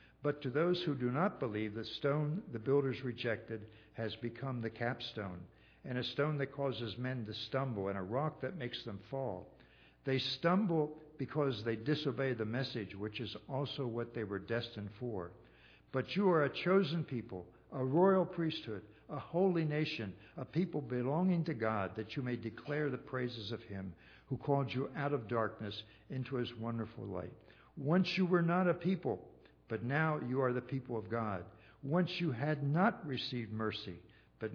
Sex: male